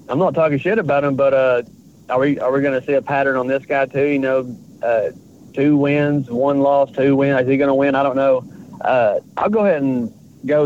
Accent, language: American, English